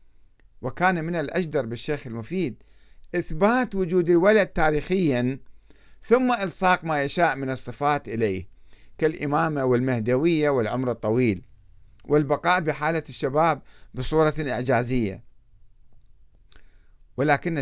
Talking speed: 90 wpm